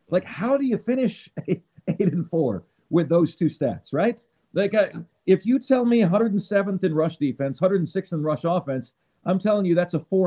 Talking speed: 195 wpm